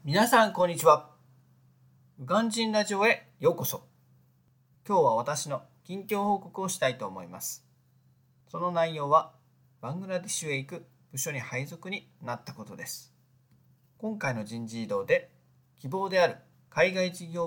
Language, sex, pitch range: Japanese, male, 130-165 Hz